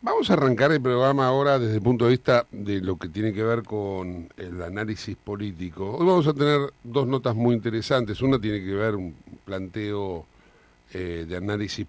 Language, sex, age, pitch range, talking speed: Spanish, male, 50-69, 95-125 Hz, 190 wpm